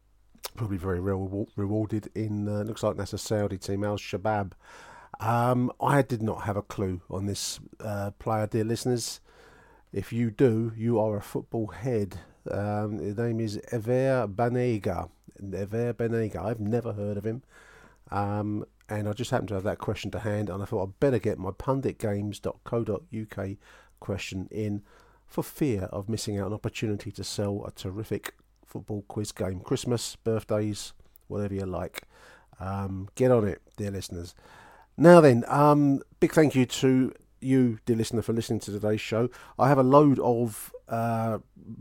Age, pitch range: 50-69, 100-120 Hz